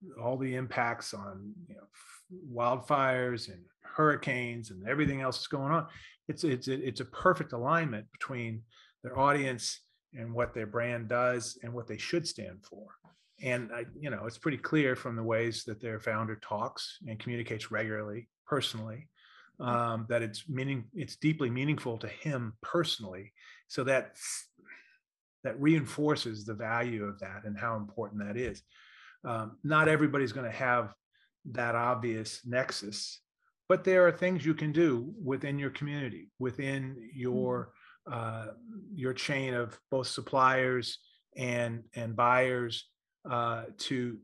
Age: 30-49